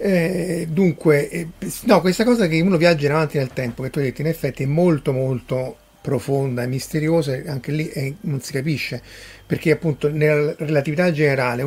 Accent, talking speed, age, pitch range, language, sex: native, 185 wpm, 40-59, 130-155 Hz, Italian, male